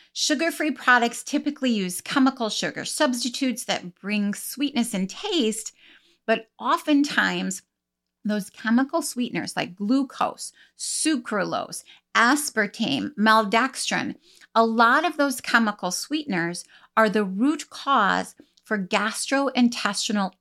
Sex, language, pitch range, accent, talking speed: female, English, 195-265 Hz, American, 100 wpm